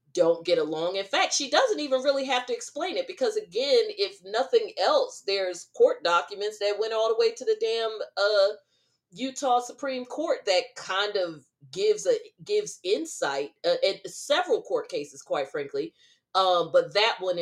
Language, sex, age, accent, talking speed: English, female, 40-59, American, 175 wpm